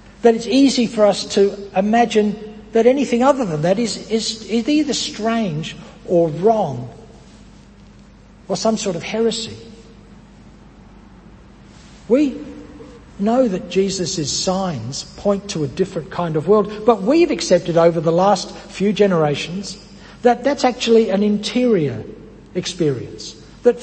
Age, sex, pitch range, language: 60-79, male, 170-225 Hz, English